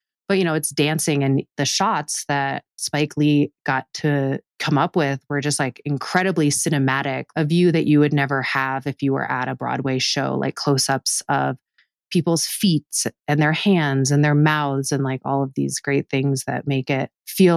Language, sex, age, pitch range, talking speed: English, female, 30-49, 135-155 Hz, 200 wpm